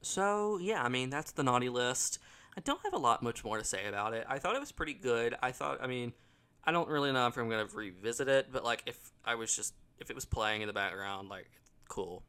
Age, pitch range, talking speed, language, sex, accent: 20-39, 105-130 Hz, 260 wpm, English, male, American